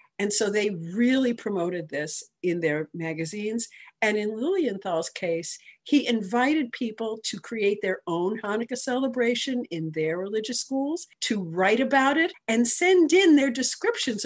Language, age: English, 50-69